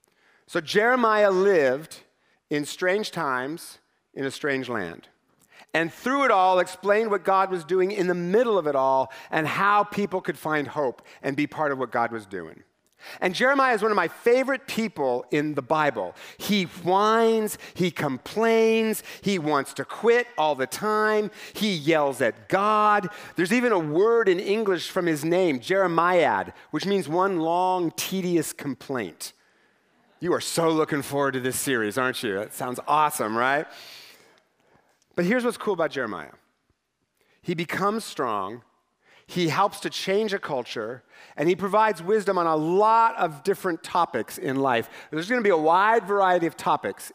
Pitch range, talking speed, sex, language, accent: 150-210 Hz, 165 wpm, male, English, American